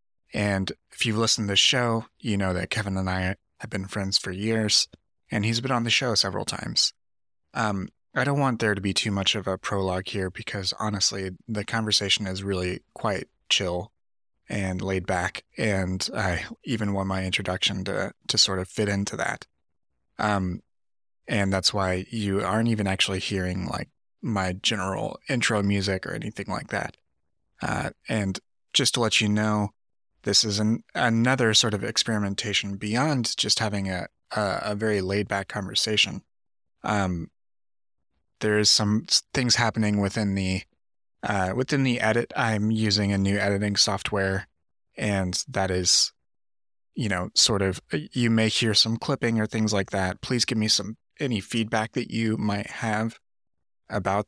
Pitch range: 95-110 Hz